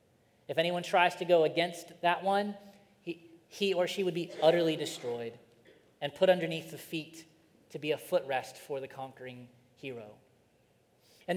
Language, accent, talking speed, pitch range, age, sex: English, American, 160 wpm, 140-180 Hz, 30-49, male